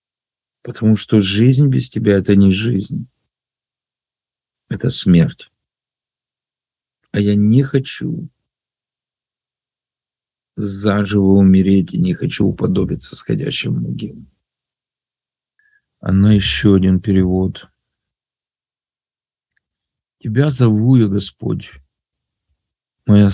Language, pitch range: Russian, 100-130 Hz